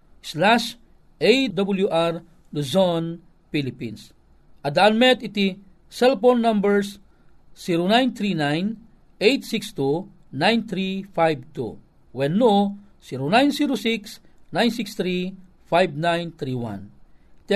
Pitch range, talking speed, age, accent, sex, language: 155-220 Hz, 40 wpm, 40-59, native, male, Filipino